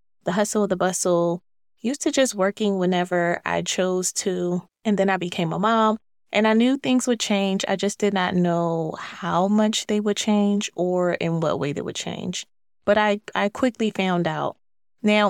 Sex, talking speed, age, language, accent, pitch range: female, 190 wpm, 20-39, English, American, 175-215 Hz